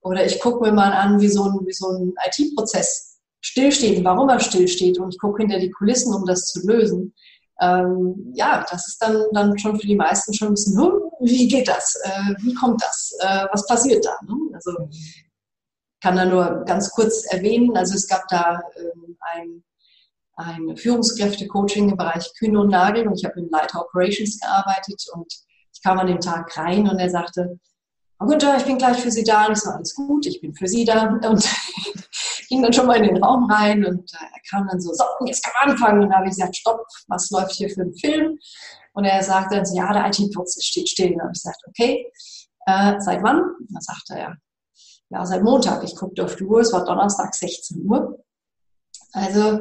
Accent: German